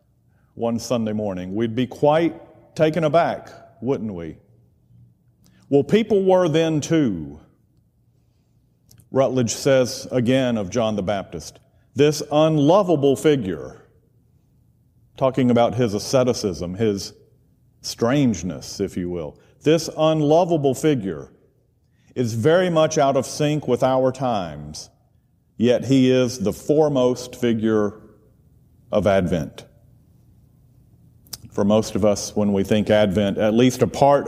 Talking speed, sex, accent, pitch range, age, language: 115 wpm, male, American, 105-135 Hz, 50-69, English